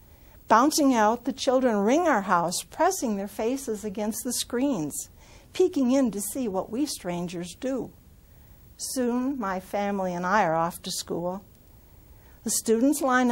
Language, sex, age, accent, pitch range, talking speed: English, female, 60-79, American, 190-260 Hz, 150 wpm